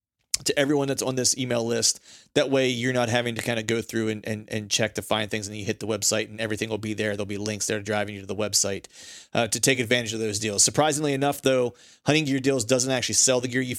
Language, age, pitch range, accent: English, 30-49, 110-130 Hz, American